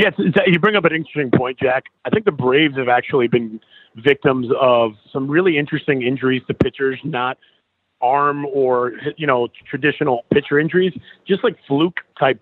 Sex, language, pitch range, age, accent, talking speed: male, English, 120-145 Hz, 30-49, American, 165 wpm